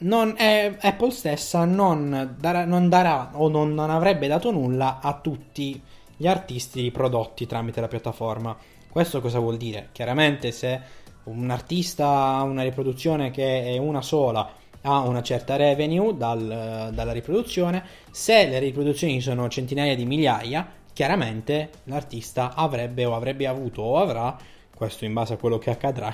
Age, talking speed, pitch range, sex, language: 20-39, 150 wpm, 115-155 Hz, male, Italian